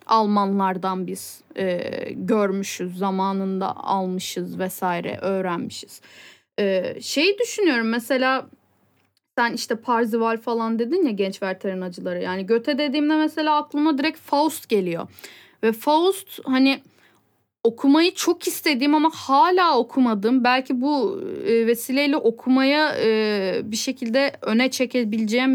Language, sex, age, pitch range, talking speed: Turkish, female, 10-29, 210-295 Hz, 110 wpm